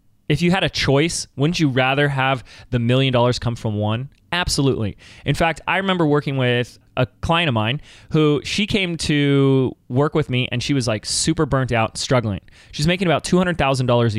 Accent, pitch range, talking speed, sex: American, 120-170 Hz, 190 wpm, male